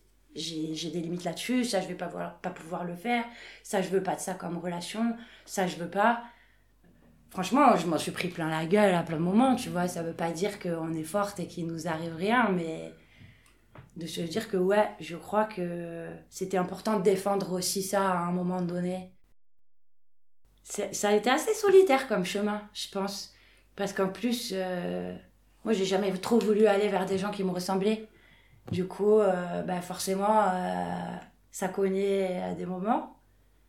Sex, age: female, 20-39